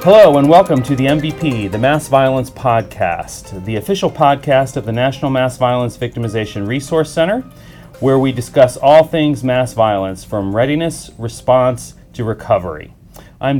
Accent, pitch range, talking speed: American, 115-150 Hz, 150 wpm